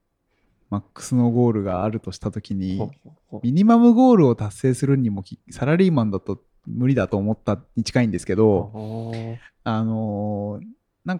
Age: 20-39